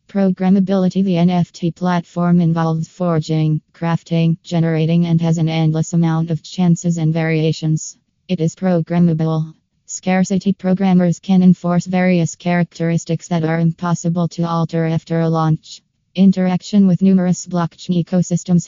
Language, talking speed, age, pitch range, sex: English, 125 wpm, 20-39, 165-180 Hz, female